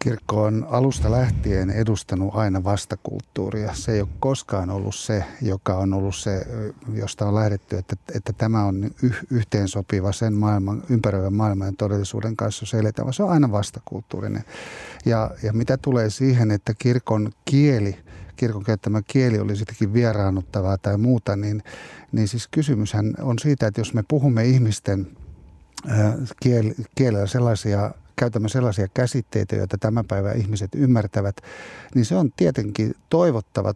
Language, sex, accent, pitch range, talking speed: Finnish, male, native, 105-130 Hz, 150 wpm